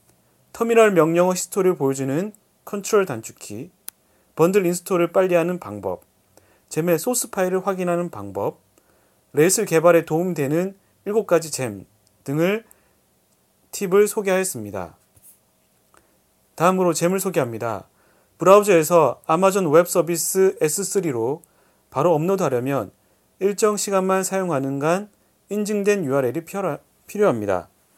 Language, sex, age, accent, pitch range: Korean, male, 30-49, native, 130-190 Hz